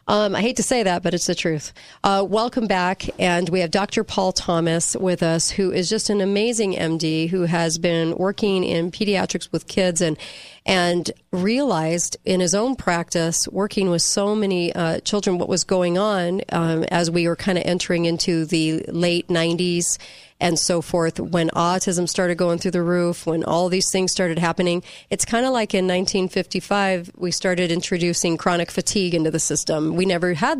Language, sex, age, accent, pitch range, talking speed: English, female, 40-59, American, 175-205 Hz, 190 wpm